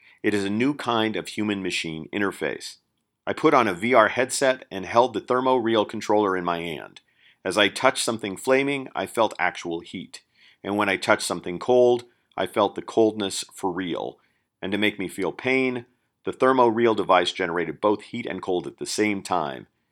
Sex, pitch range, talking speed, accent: male, 100-125 Hz, 185 wpm, American